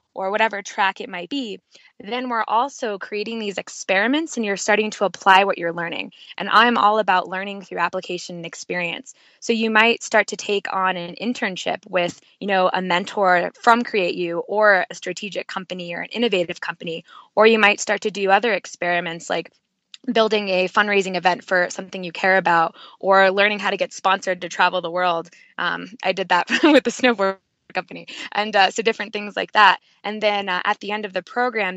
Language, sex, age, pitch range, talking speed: English, female, 10-29, 180-215 Hz, 200 wpm